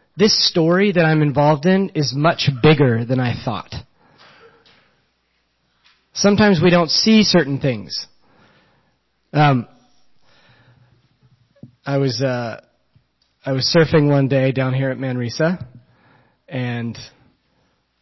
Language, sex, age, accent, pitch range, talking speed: English, male, 30-49, American, 125-165 Hz, 105 wpm